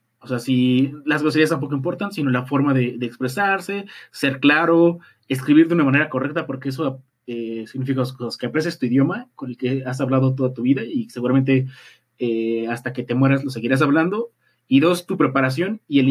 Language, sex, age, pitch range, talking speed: Spanish, male, 30-49, 130-170 Hz, 200 wpm